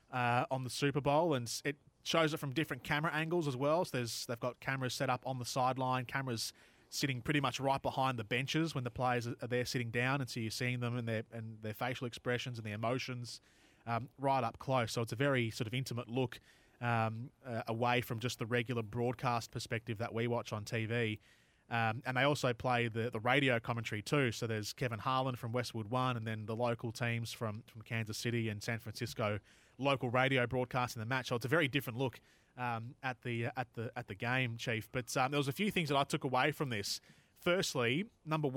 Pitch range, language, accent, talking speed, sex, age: 120-135 Hz, English, Australian, 225 wpm, male, 20-39